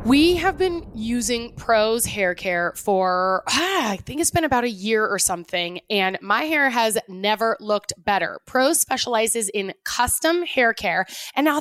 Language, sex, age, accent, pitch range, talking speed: English, female, 20-39, American, 205-275 Hz, 170 wpm